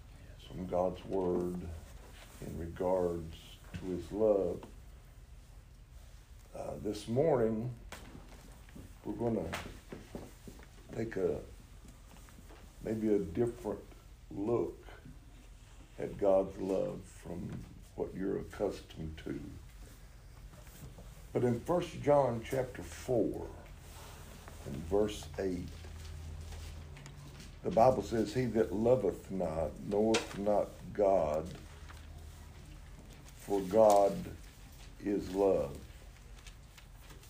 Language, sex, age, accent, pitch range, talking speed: English, male, 60-79, American, 80-110 Hz, 80 wpm